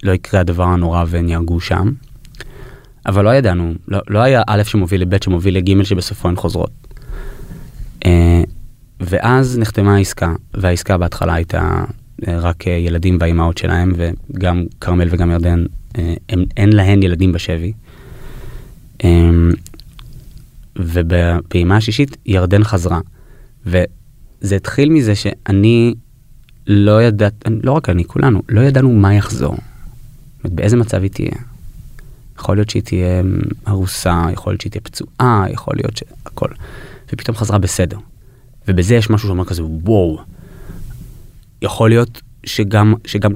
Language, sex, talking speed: Hebrew, male, 120 wpm